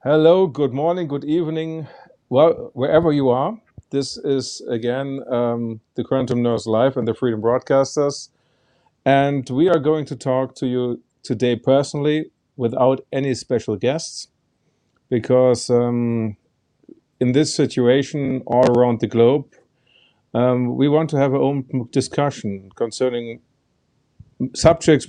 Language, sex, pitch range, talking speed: English, male, 115-135 Hz, 130 wpm